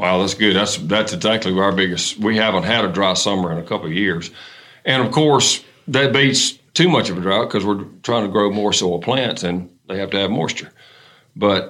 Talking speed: 225 wpm